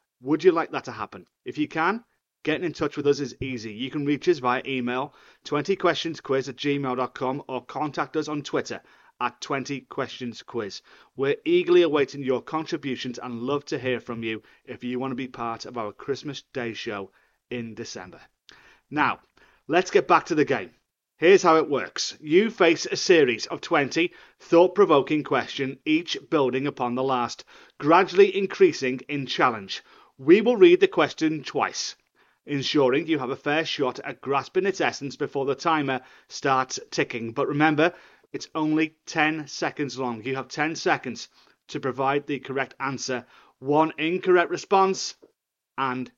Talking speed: 160 wpm